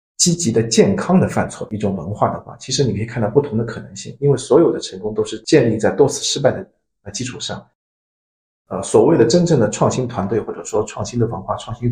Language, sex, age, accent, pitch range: Chinese, male, 50-69, native, 110-140 Hz